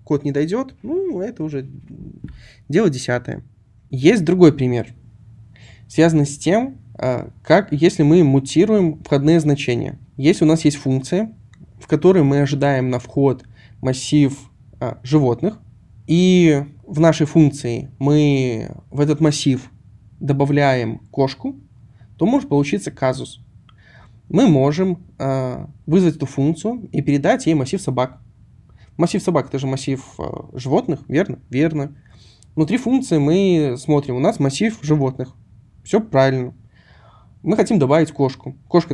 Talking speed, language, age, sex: 125 wpm, Russian, 20-39, male